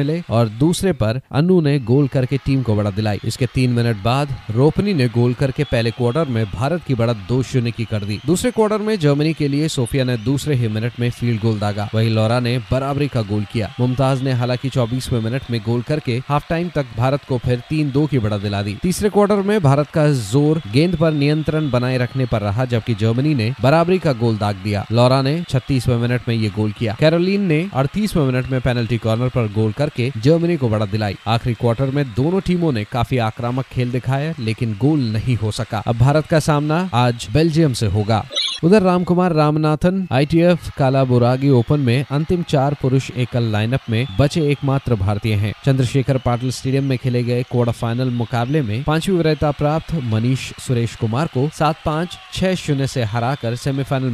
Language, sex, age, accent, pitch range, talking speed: Hindi, male, 30-49, native, 120-150 Hz, 200 wpm